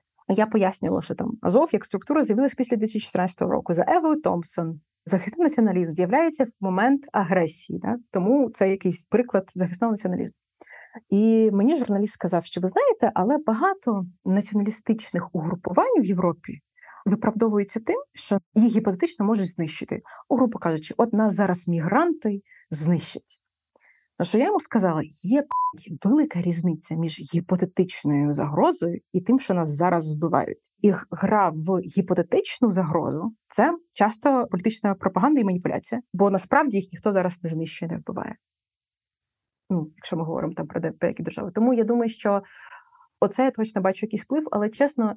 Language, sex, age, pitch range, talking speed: Ukrainian, female, 30-49, 180-230 Hz, 150 wpm